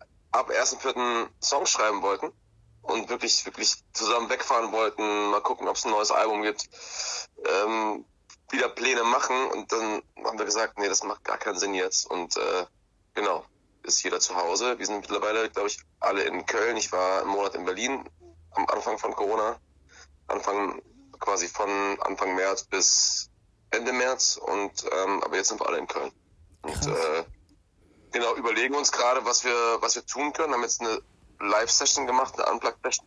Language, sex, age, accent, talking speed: German, male, 20-39, German, 180 wpm